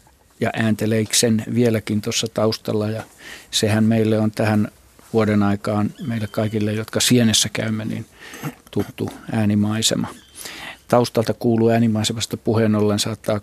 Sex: male